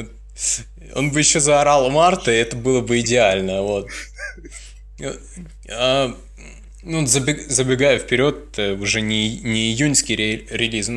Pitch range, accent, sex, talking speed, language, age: 110-135 Hz, native, male, 90 wpm, Russian, 20-39